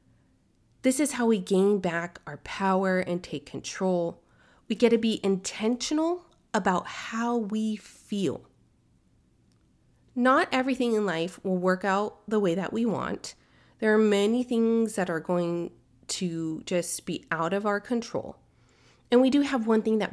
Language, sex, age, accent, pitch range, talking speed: English, female, 30-49, American, 175-225 Hz, 160 wpm